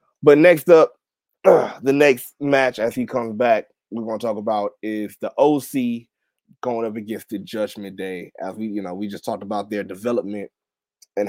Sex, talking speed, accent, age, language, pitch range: male, 180 wpm, American, 20-39, English, 100-130 Hz